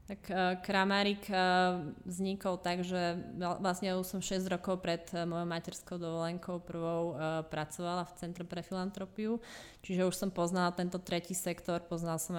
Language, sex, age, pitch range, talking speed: Slovak, female, 20-39, 165-185 Hz, 140 wpm